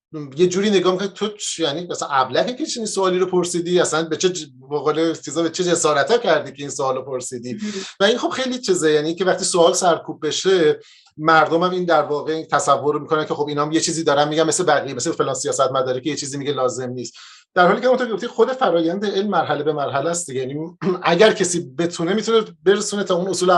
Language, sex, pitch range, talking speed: Persian, male, 140-185 Hz, 210 wpm